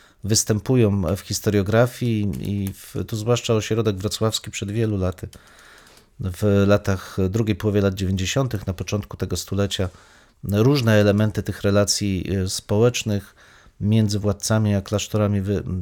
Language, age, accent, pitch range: Polish, 40-59, native, 100-120 Hz